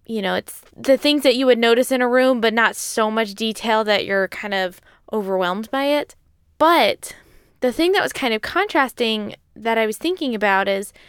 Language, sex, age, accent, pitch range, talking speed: English, female, 20-39, American, 215-285 Hz, 205 wpm